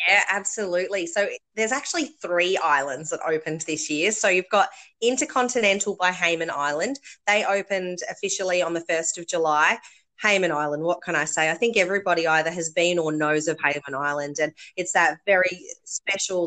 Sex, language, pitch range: female, English, 160-205 Hz